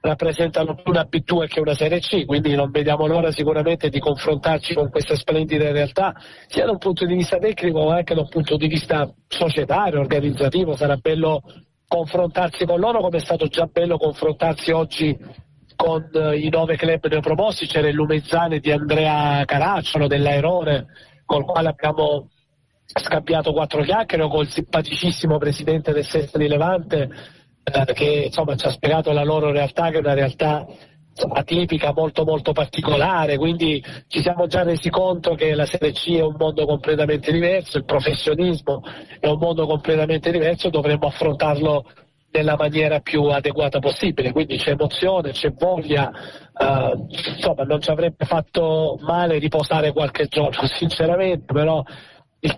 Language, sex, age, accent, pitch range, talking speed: Italian, male, 40-59, native, 145-165 Hz, 155 wpm